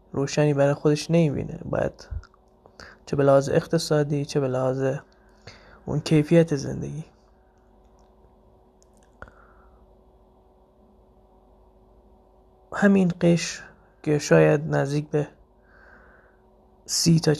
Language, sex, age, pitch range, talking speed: Persian, male, 20-39, 140-160 Hz, 85 wpm